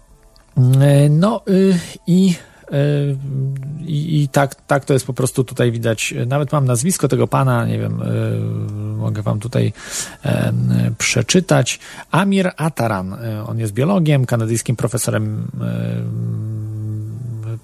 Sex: male